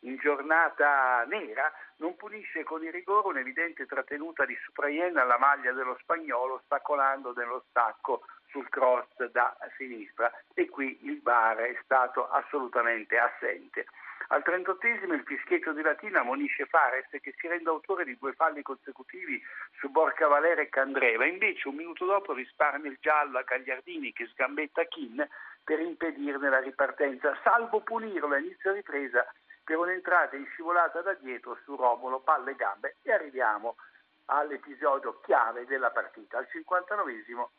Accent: native